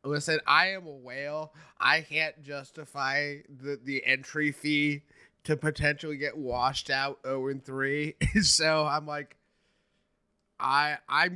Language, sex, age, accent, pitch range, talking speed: English, male, 20-39, American, 125-155 Hz, 120 wpm